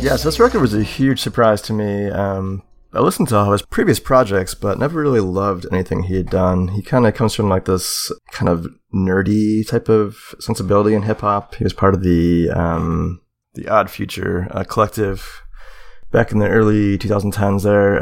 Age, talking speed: 30-49, 205 wpm